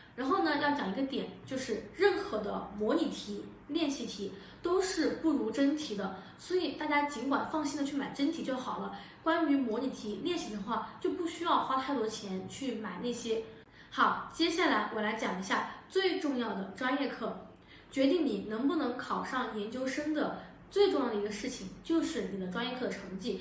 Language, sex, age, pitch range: Chinese, female, 20-39, 220-300 Hz